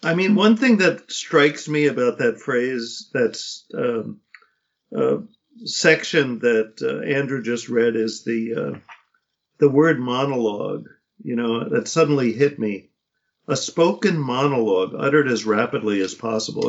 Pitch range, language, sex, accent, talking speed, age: 125-185 Hz, English, male, American, 145 wpm, 50-69